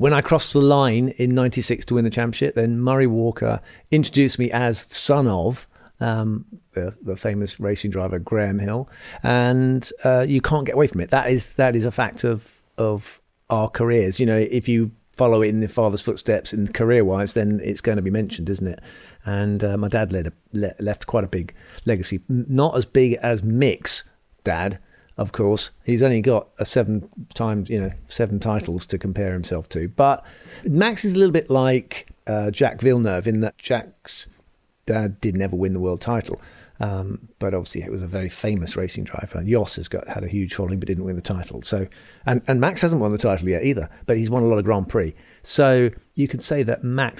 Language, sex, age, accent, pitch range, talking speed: English, male, 50-69, British, 100-125 Hz, 210 wpm